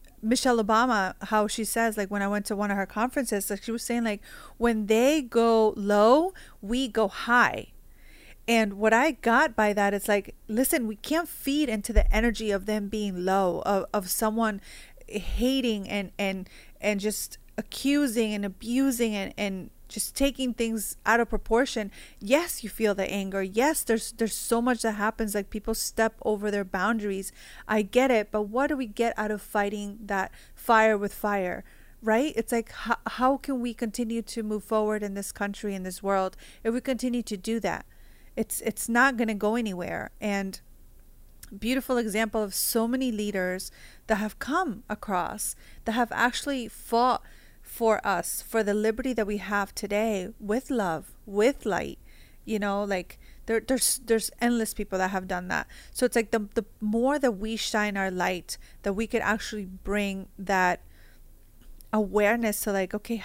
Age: 30-49